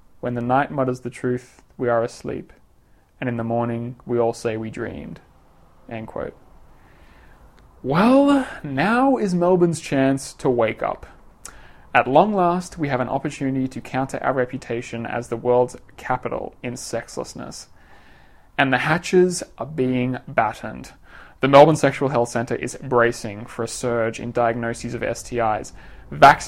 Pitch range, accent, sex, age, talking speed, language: 115-140 Hz, Australian, male, 20-39, 150 wpm, English